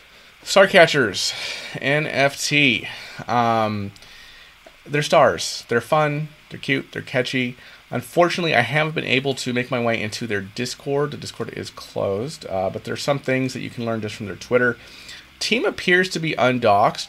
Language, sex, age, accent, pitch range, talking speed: English, male, 30-49, American, 105-135 Hz, 160 wpm